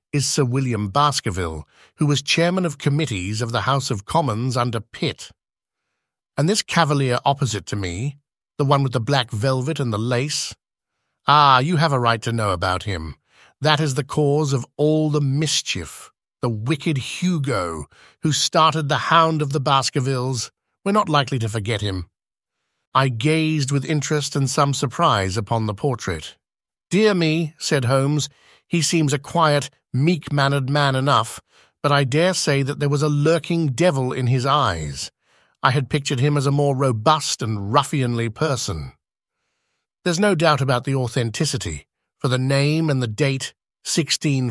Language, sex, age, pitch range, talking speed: English, male, 50-69, 125-155 Hz, 165 wpm